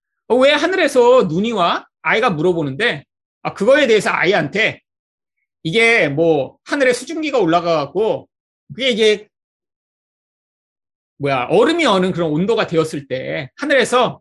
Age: 30-49